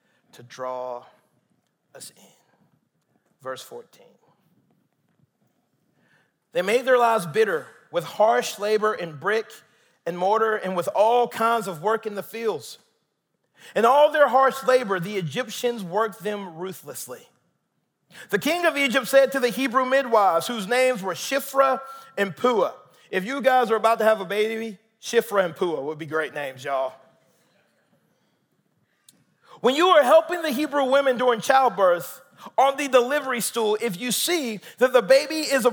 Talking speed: 150 wpm